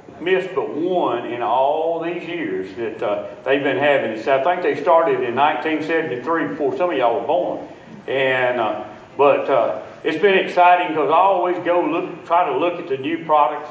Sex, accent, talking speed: male, American, 195 wpm